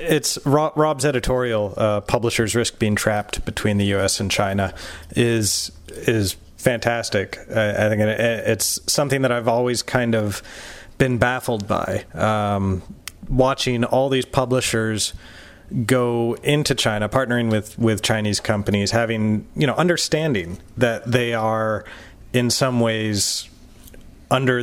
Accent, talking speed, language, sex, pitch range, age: American, 130 wpm, English, male, 105-130 Hz, 30-49